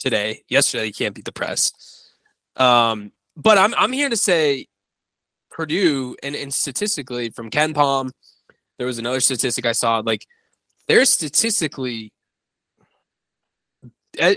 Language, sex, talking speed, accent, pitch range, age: English, male, 130 wpm, American, 115-150 Hz, 20-39